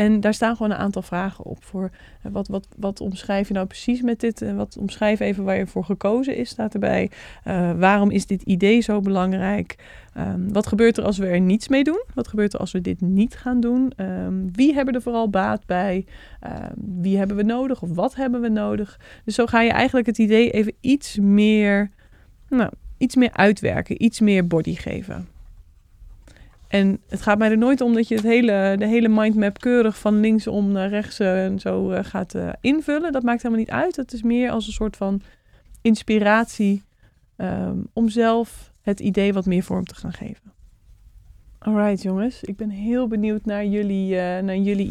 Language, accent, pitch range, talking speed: Dutch, Dutch, 195-235 Hz, 195 wpm